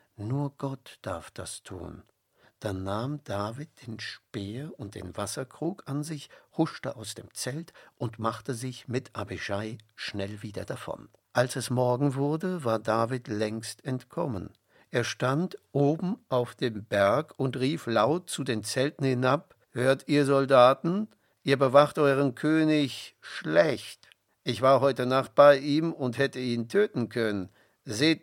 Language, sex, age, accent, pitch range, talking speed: German, male, 60-79, German, 110-140 Hz, 145 wpm